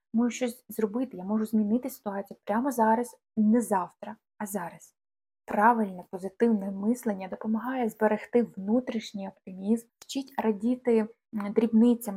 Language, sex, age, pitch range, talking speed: Ukrainian, female, 20-39, 195-240 Hz, 115 wpm